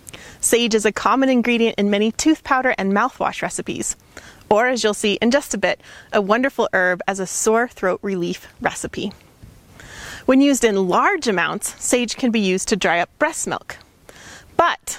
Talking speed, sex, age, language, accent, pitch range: 175 wpm, female, 30-49, English, American, 205-255 Hz